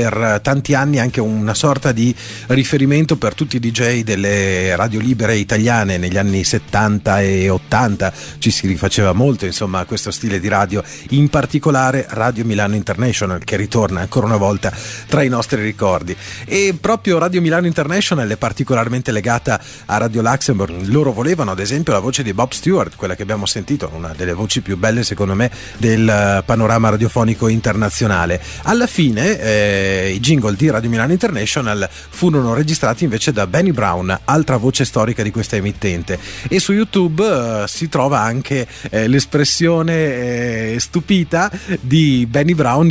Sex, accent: male, native